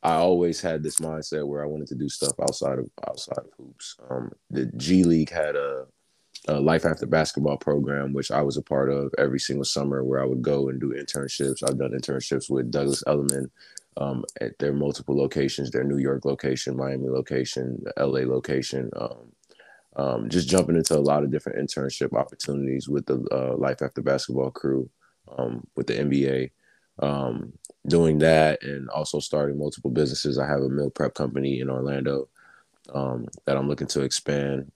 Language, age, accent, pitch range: English, 20-39, American, 65-70 Hz